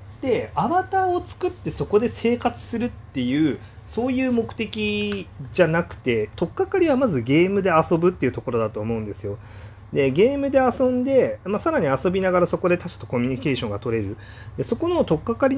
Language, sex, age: Japanese, male, 30-49